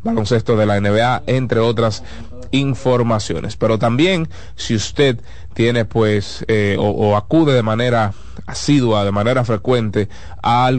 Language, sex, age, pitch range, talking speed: Spanish, male, 30-49, 105-130 Hz, 130 wpm